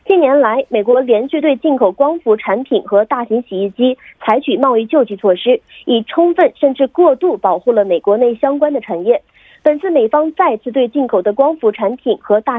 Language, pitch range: Korean, 225-315 Hz